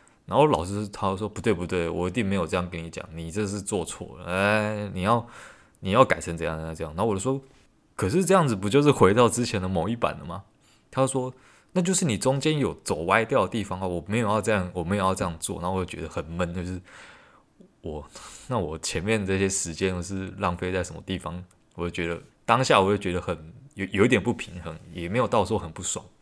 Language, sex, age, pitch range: Chinese, male, 20-39, 90-110 Hz